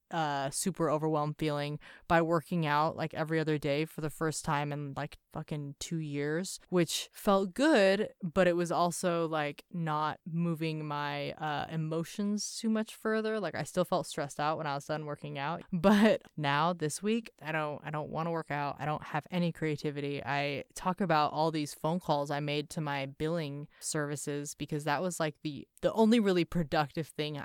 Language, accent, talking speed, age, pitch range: English, American, 190 wpm, 20-39, 150-175 Hz